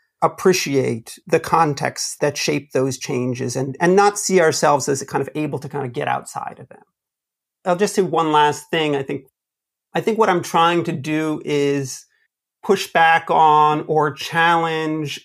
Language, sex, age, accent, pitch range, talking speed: English, male, 40-59, American, 140-175 Hz, 175 wpm